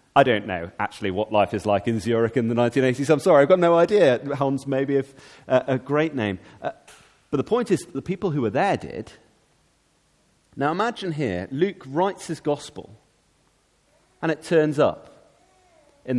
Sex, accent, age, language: male, British, 30-49, English